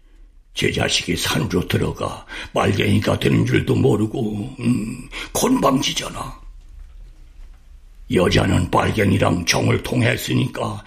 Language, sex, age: Korean, male, 60-79